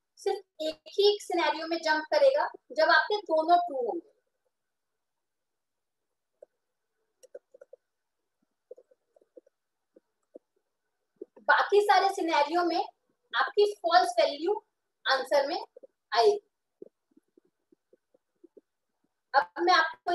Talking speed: 75 wpm